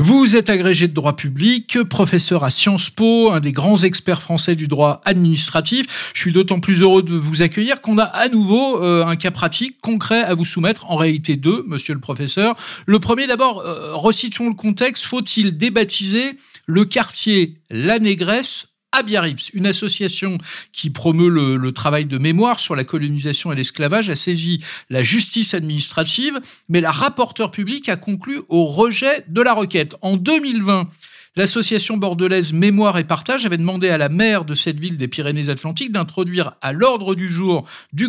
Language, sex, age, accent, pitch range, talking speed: French, male, 50-69, French, 160-225 Hz, 170 wpm